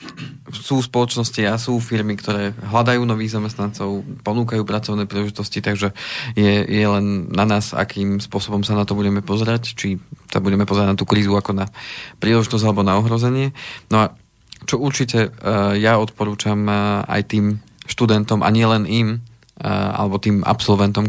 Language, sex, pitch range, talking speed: Slovak, male, 100-110 Hz, 150 wpm